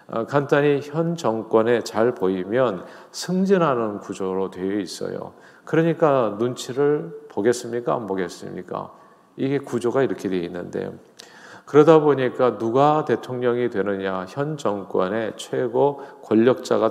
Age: 40-59